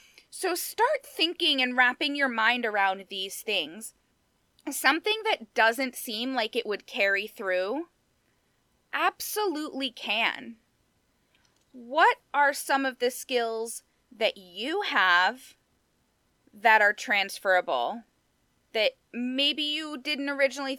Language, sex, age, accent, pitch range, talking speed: English, female, 20-39, American, 225-300 Hz, 110 wpm